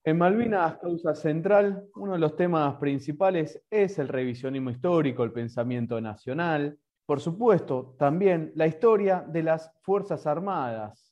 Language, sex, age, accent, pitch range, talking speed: Spanish, male, 30-49, Argentinian, 140-185 Hz, 135 wpm